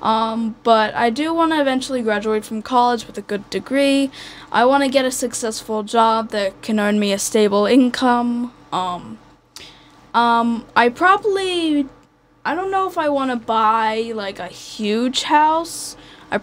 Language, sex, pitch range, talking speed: English, female, 210-250 Hz, 165 wpm